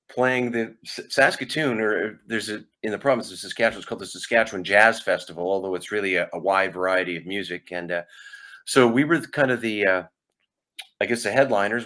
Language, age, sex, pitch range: English, 40-59, male, 90-110 Hz